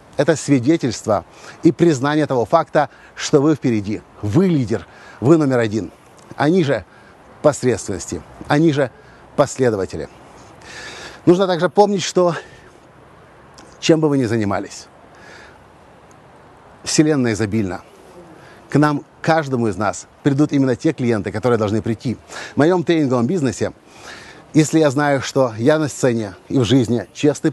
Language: Russian